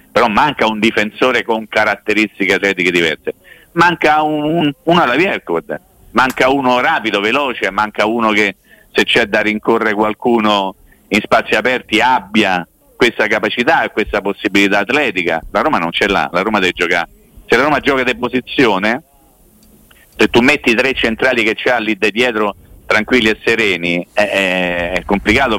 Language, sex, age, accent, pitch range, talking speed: Italian, male, 50-69, native, 95-130 Hz, 160 wpm